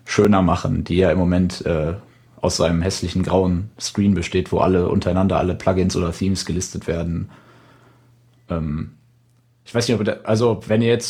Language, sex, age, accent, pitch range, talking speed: German, male, 30-49, German, 90-110 Hz, 175 wpm